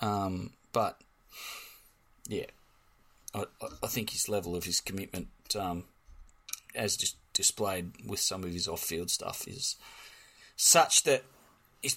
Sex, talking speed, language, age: male, 130 wpm, English, 20-39